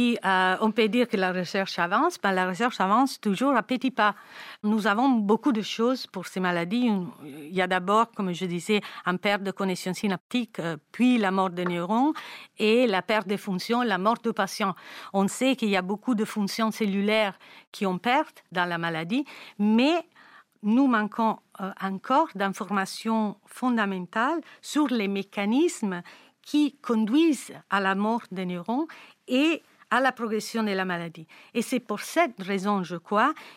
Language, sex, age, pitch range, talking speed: French, female, 50-69, 190-245 Hz, 170 wpm